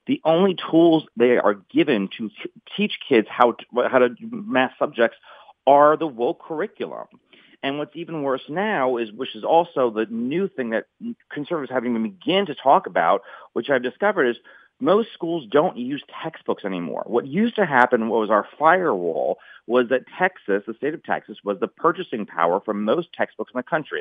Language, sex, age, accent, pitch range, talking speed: English, male, 40-59, American, 115-160 Hz, 185 wpm